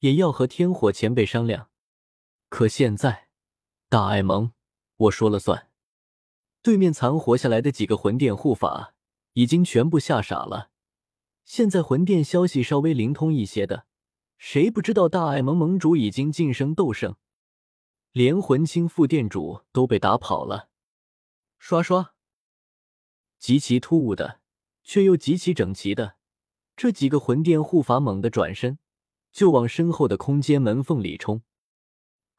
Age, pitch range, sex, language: 20-39, 110-165 Hz, male, Chinese